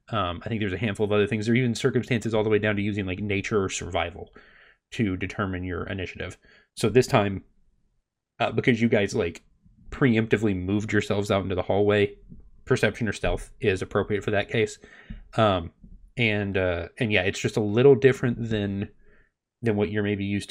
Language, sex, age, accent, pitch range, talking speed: English, male, 30-49, American, 100-120 Hz, 190 wpm